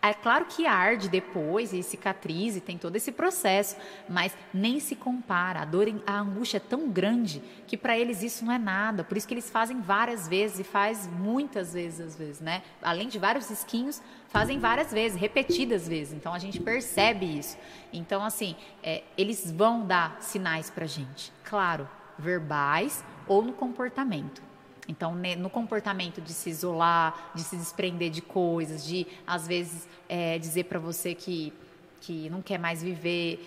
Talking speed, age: 170 wpm, 20-39